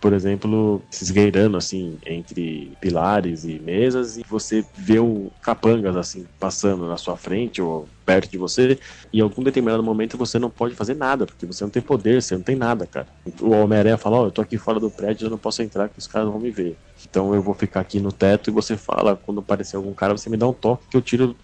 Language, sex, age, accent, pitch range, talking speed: Portuguese, male, 20-39, Brazilian, 95-110 Hz, 240 wpm